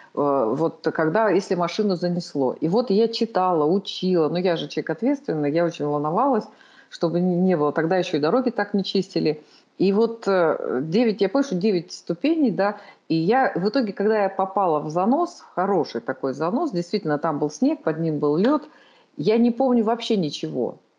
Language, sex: Russian, female